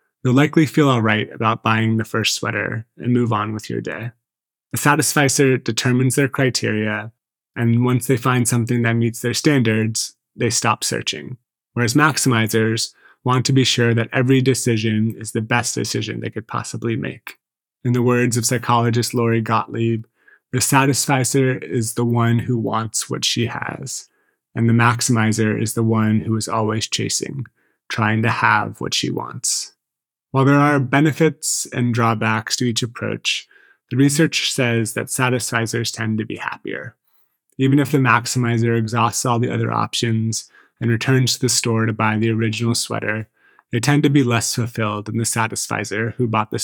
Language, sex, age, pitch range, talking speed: English, male, 20-39, 110-130 Hz, 170 wpm